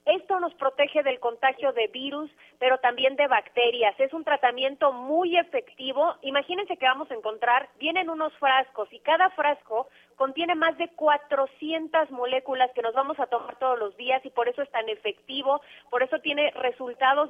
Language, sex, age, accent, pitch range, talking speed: Spanish, female, 30-49, Mexican, 230-285 Hz, 175 wpm